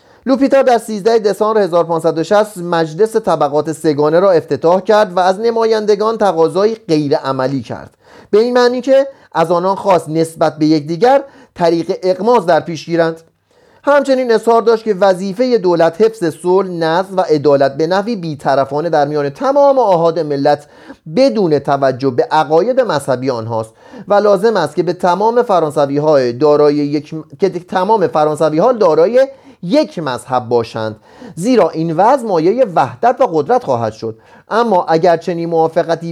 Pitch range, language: 150-220 Hz, Persian